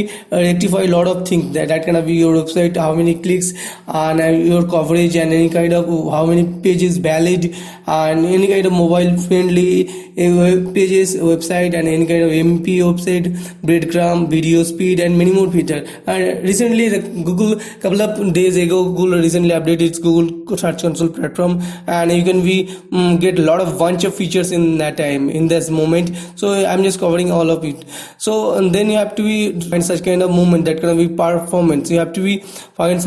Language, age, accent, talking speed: English, 20-39, Indian, 205 wpm